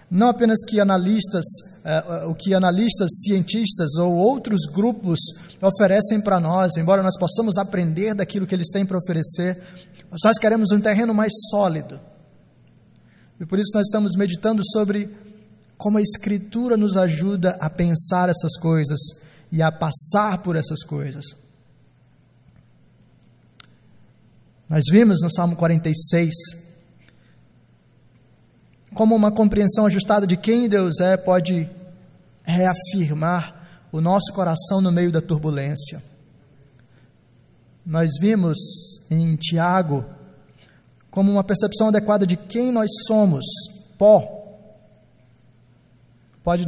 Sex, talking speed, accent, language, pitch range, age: male, 115 wpm, Brazilian, Portuguese, 165-205 Hz, 20-39